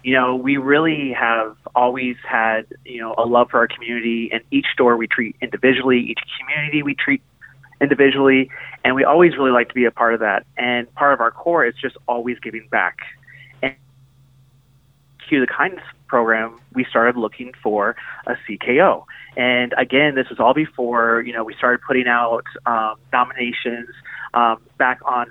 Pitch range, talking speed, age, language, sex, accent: 120-135 Hz, 175 wpm, 30-49, English, male, American